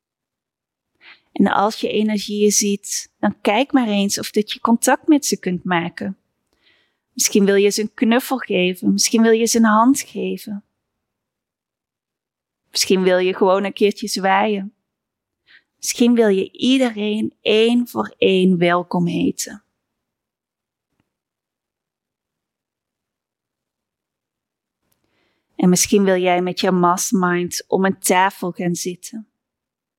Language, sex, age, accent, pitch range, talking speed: Dutch, female, 30-49, Dutch, 185-215 Hz, 120 wpm